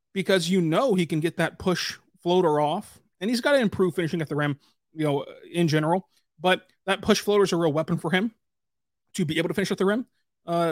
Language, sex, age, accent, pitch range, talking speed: English, male, 30-49, American, 145-175 Hz, 235 wpm